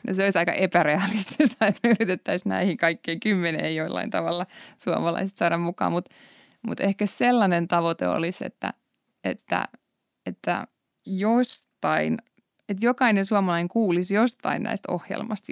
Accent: native